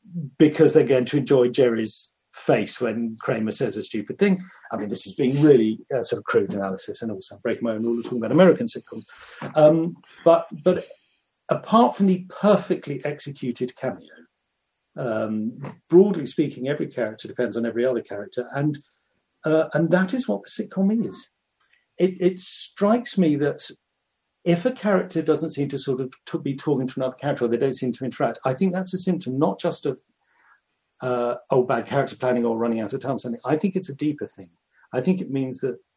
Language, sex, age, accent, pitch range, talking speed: English, male, 50-69, British, 125-175 Hz, 195 wpm